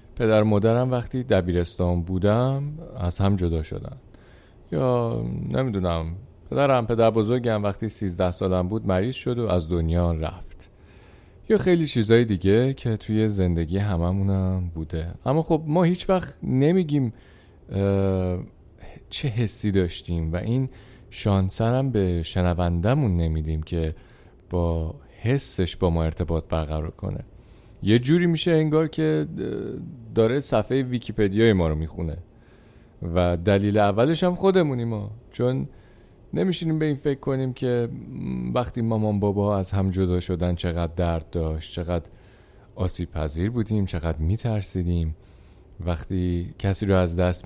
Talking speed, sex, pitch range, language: 125 wpm, male, 85-115 Hz, Persian